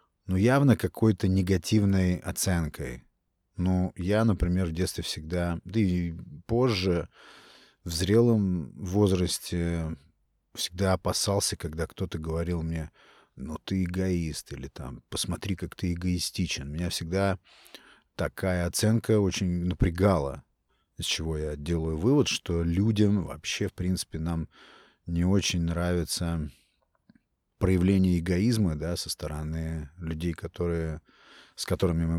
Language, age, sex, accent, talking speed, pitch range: Russian, 30-49, male, native, 110 wpm, 85-100 Hz